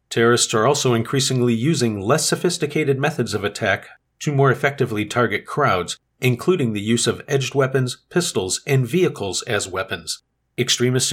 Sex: male